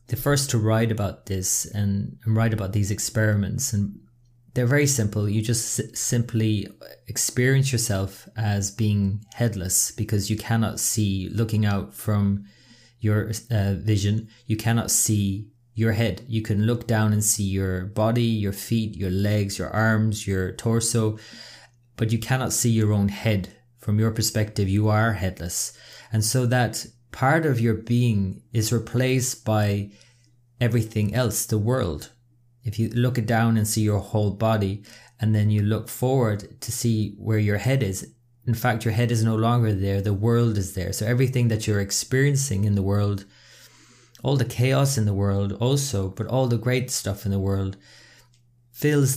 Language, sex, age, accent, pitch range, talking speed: English, male, 20-39, Irish, 105-120 Hz, 170 wpm